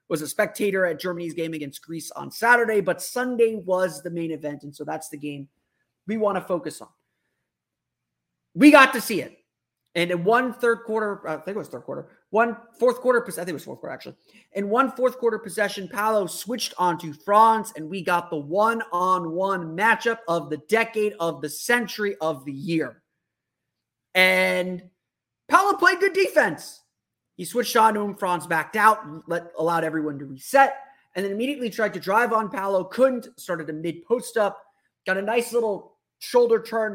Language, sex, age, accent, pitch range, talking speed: English, male, 30-49, American, 160-220 Hz, 185 wpm